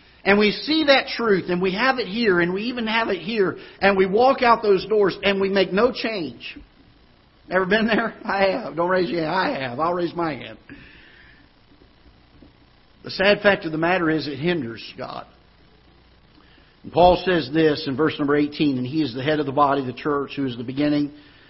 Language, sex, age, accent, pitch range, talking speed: English, male, 50-69, American, 130-175 Hz, 205 wpm